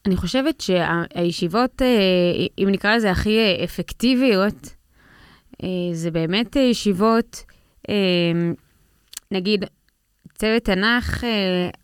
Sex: female